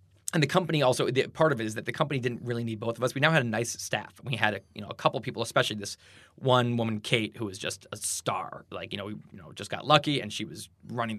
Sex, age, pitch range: male, 20-39, 110-140 Hz